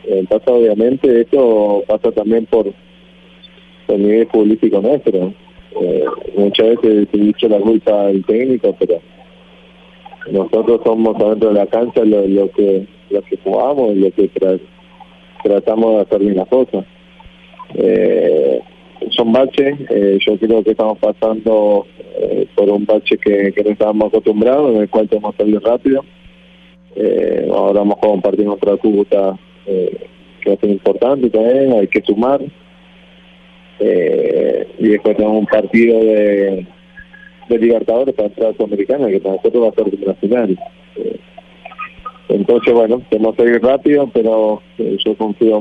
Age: 20-39